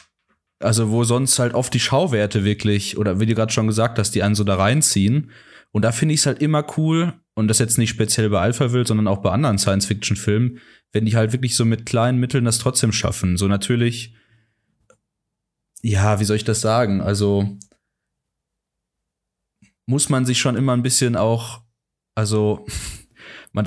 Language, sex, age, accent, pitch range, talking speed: English, male, 20-39, German, 105-125 Hz, 175 wpm